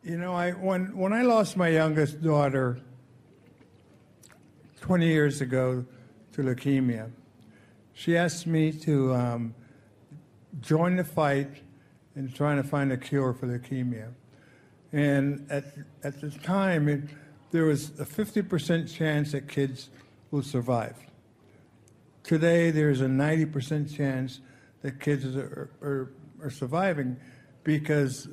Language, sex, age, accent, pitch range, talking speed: English, male, 60-79, American, 130-155 Hz, 125 wpm